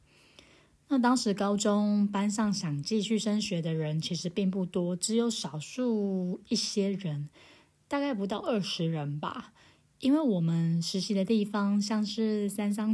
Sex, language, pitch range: female, Chinese, 175-210 Hz